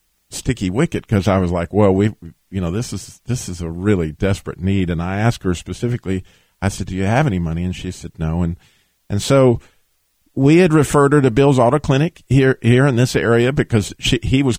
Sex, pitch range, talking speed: male, 95-125 Hz, 220 wpm